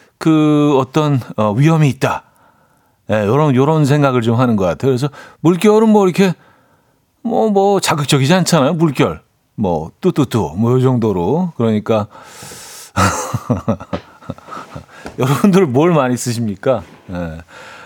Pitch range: 125-180 Hz